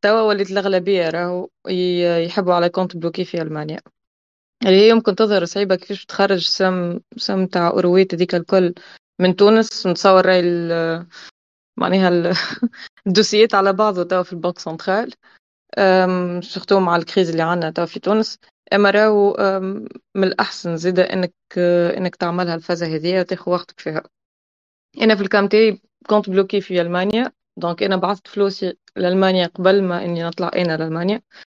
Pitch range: 175-205 Hz